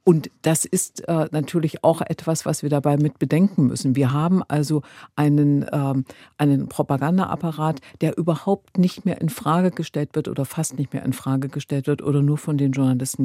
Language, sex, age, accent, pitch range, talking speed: German, female, 50-69, German, 135-165 Hz, 185 wpm